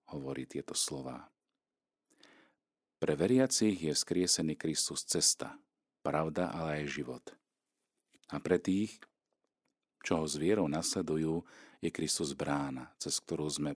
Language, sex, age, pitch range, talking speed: Slovak, male, 40-59, 70-85 Hz, 115 wpm